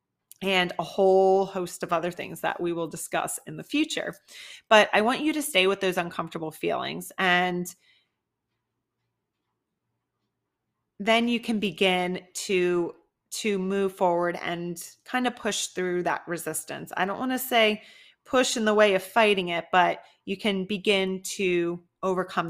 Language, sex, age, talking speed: English, female, 30-49, 155 wpm